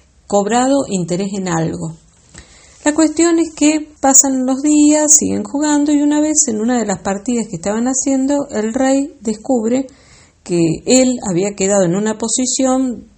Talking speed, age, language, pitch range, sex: 155 wpm, 40-59, Spanish, 180-250 Hz, female